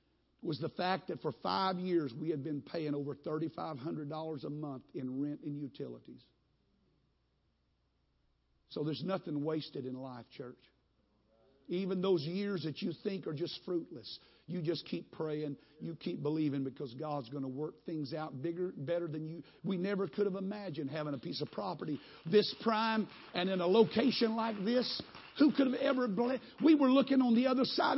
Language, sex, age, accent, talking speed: English, male, 50-69, American, 175 wpm